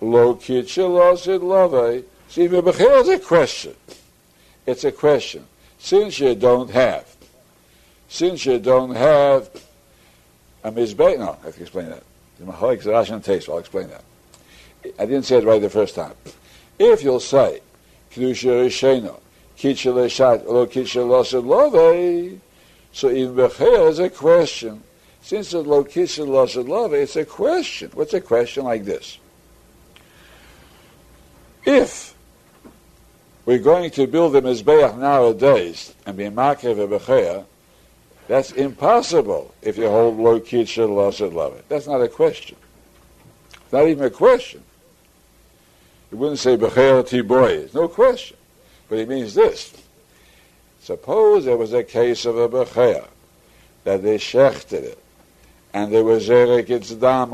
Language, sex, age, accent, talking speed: English, male, 60-79, American, 140 wpm